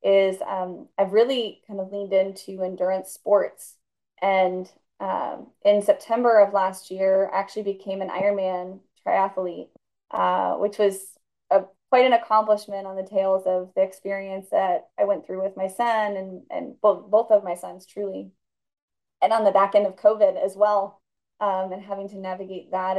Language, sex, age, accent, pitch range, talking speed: English, female, 20-39, American, 190-220 Hz, 170 wpm